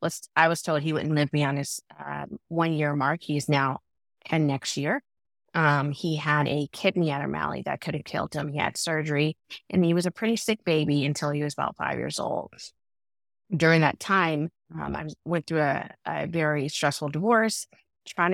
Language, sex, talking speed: English, female, 185 wpm